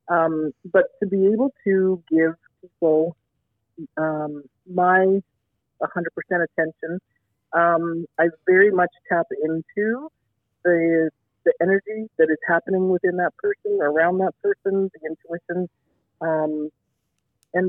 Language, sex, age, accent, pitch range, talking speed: English, female, 40-59, American, 155-190 Hz, 115 wpm